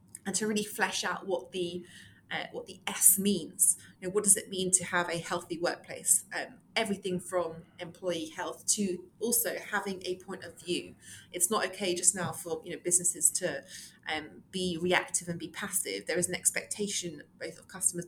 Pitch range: 170-195 Hz